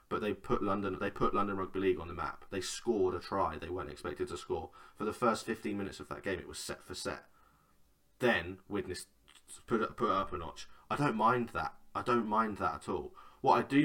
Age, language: 20-39, English